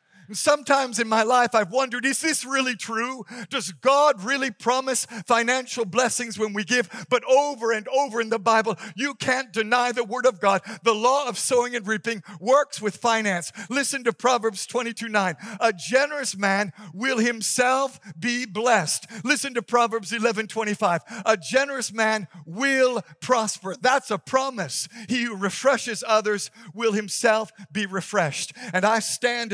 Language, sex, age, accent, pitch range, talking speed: English, male, 50-69, American, 210-245 Hz, 155 wpm